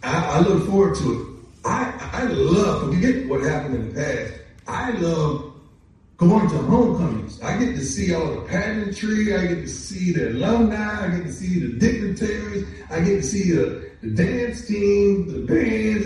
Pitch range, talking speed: 175-245 Hz, 185 wpm